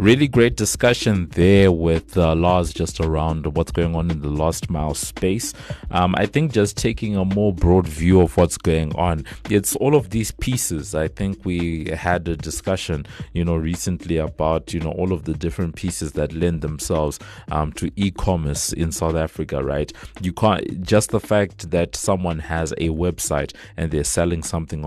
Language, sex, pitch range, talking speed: English, male, 75-90 Hz, 185 wpm